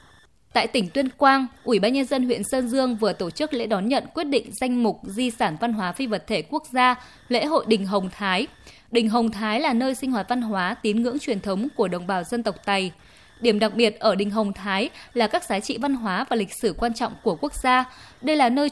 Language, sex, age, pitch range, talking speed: Vietnamese, female, 20-39, 205-260 Hz, 250 wpm